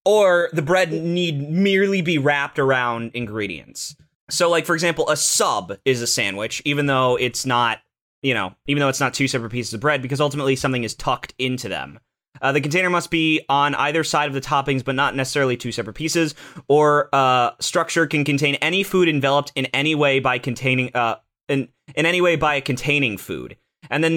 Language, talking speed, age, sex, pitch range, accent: English, 205 wpm, 20-39, male, 125-155 Hz, American